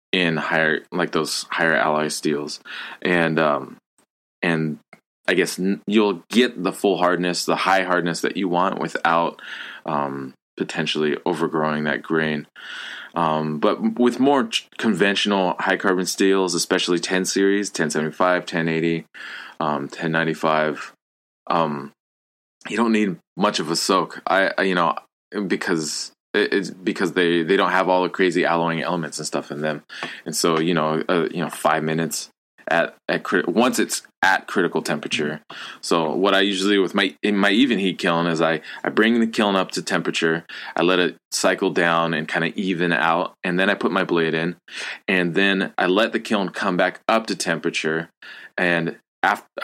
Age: 20-39